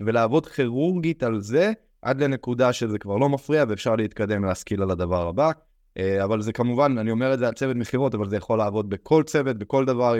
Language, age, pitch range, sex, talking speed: Hebrew, 20-39, 110-150 Hz, male, 200 wpm